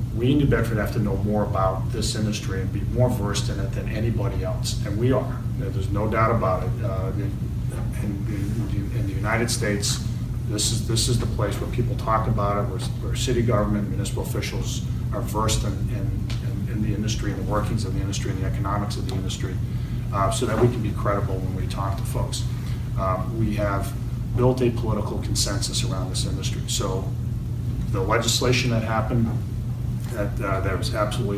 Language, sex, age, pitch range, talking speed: English, male, 40-59, 110-120 Hz, 205 wpm